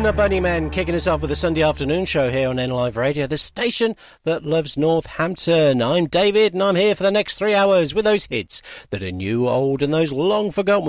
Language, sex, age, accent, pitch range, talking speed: English, male, 50-69, British, 120-195 Hz, 220 wpm